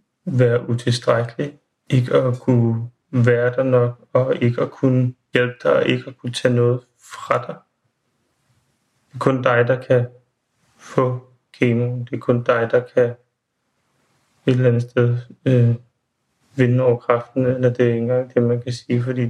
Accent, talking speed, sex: native, 170 wpm, male